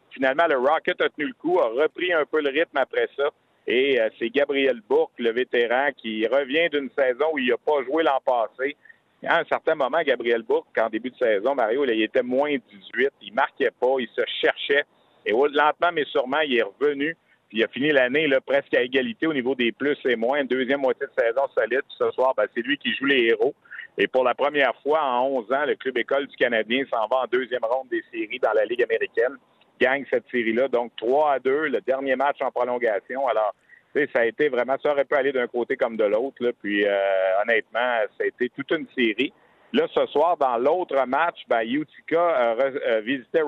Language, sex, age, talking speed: French, male, 50-69, 220 wpm